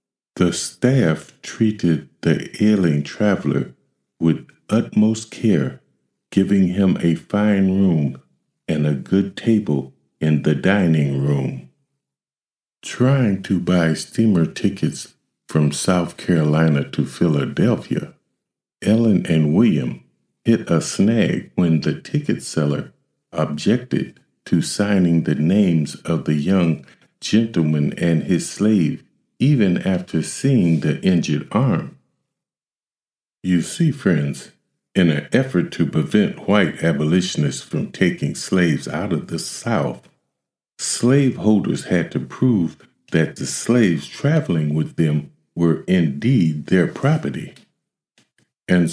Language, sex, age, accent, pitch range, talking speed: English, male, 50-69, American, 75-100 Hz, 115 wpm